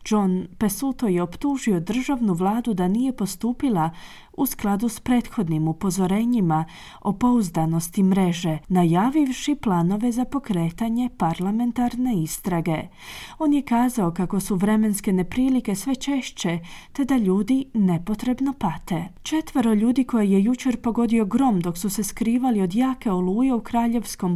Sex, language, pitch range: female, Croatian, 180-240 Hz